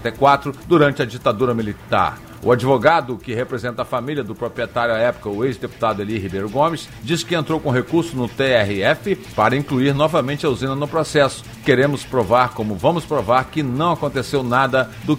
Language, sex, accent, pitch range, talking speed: Portuguese, male, Brazilian, 120-150 Hz, 170 wpm